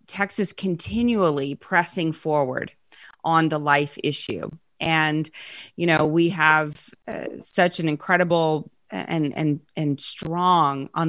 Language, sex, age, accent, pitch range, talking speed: English, female, 30-49, American, 155-180 Hz, 120 wpm